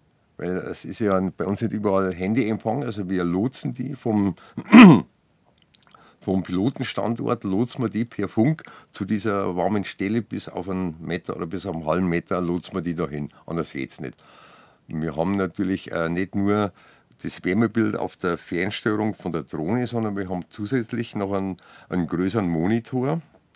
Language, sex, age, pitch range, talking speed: German, male, 50-69, 90-115 Hz, 165 wpm